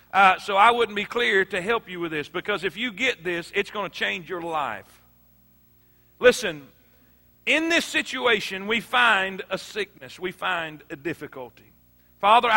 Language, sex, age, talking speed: English, male, 40-59, 165 wpm